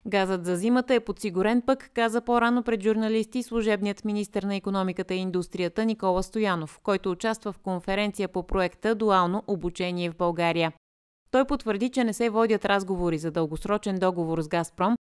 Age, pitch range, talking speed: 30-49, 175-220 Hz, 160 wpm